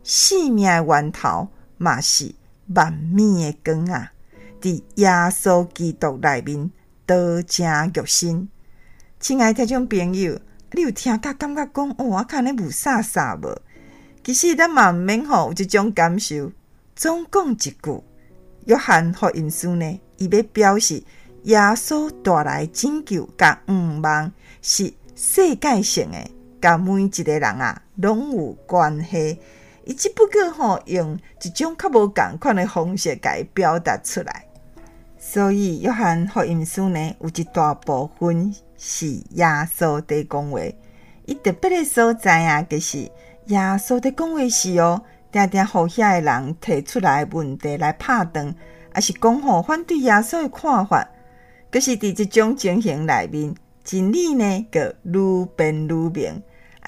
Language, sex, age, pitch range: Chinese, female, 50-69, 165-240 Hz